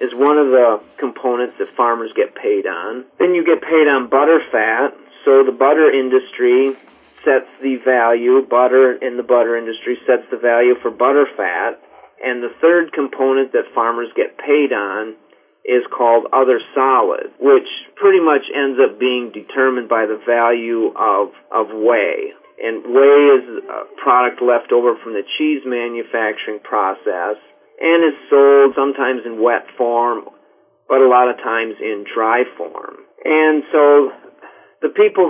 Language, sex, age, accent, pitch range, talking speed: English, male, 40-59, American, 120-155 Hz, 155 wpm